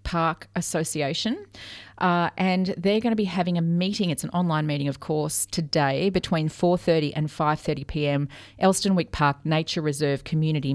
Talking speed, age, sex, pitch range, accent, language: 155 wpm, 40-59, female, 145-185 Hz, Australian, English